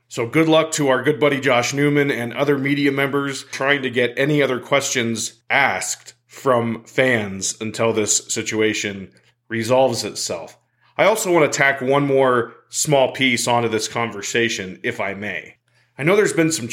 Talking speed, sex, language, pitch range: 170 wpm, male, English, 115-135 Hz